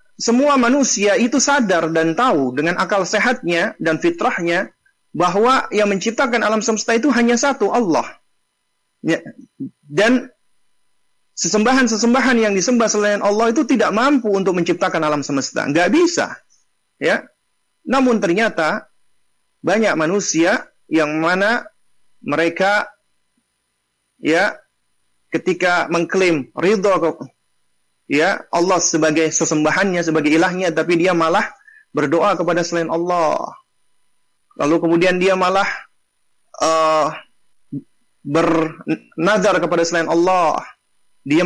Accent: native